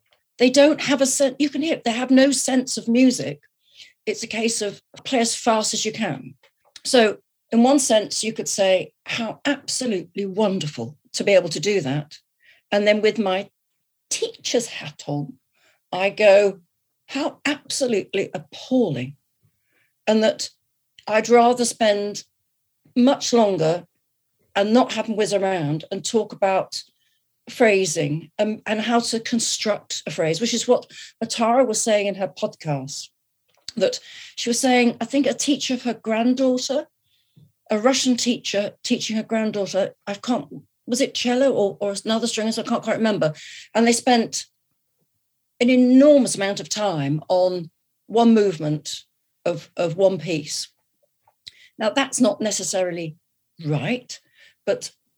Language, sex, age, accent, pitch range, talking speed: English, female, 40-59, British, 190-250 Hz, 150 wpm